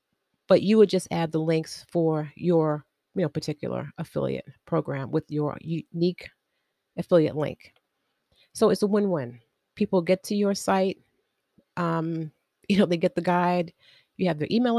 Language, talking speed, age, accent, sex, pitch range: English, 155 wpm, 30-49, American, female, 160-200 Hz